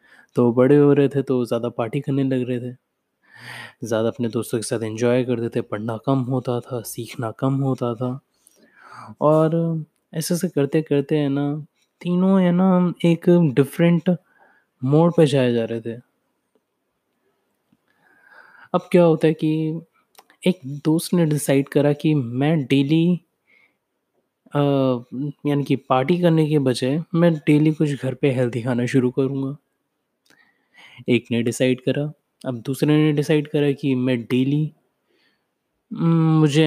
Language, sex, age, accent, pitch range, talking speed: Hindi, male, 20-39, native, 125-155 Hz, 140 wpm